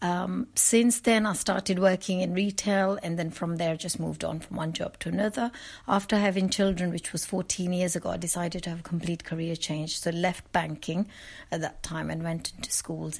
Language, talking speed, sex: English, 210 wpm, female